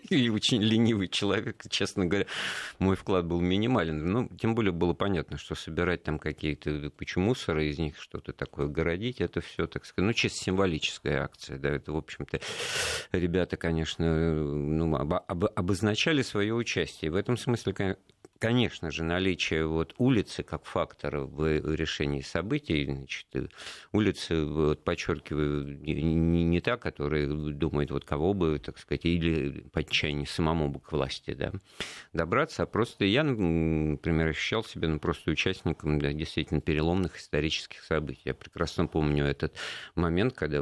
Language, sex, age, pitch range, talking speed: Russian, male, 50-69, 75-95 Hz, 150 wpm